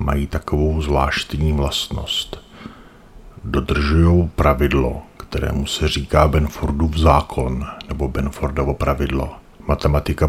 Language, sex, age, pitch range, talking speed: Czech, male, 50-69, 70-80 Hz, 85 wpm